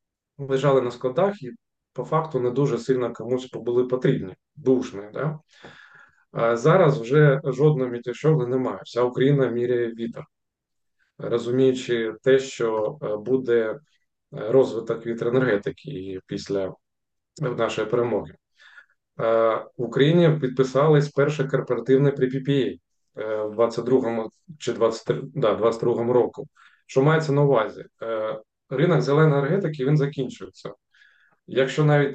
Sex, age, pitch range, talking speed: male, 20-39, 120-140 Hz, 105 wpm